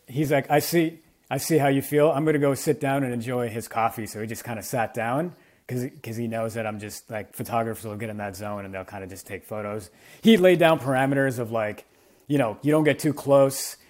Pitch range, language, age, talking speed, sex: 110-140 Hz, English, 30-49, 255 wpm, male